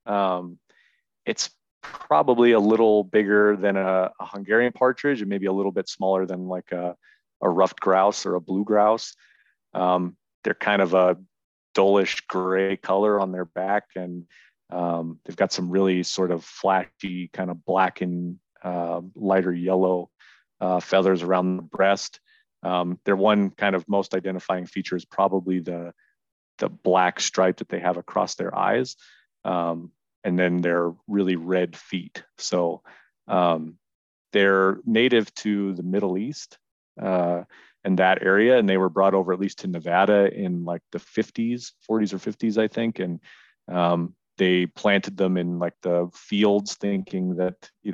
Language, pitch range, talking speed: English, 90-100 Hz, 160 wpm